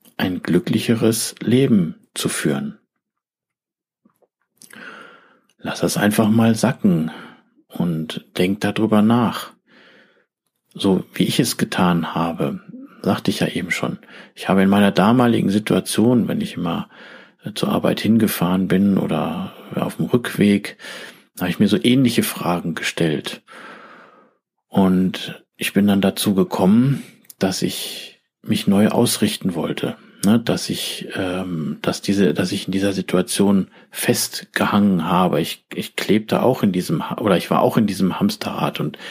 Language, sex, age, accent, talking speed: German, male, 50-69, German, 130 wpm